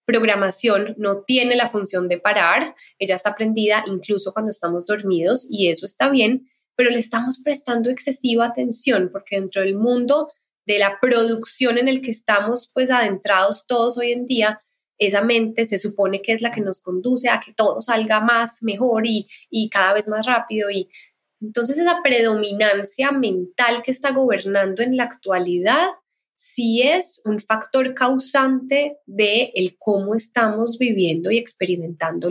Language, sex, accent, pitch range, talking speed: Spanish, female, Colombian, 200-245 Hz, 160 wpm